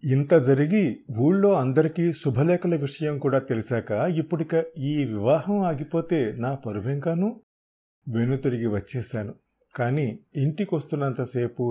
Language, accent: Telugu, native